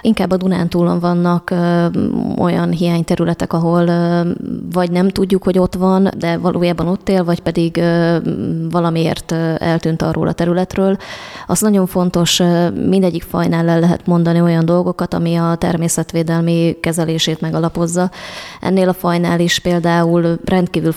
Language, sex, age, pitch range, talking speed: Hungarian, female, 20-39, 165-180 Hz, 130 wpm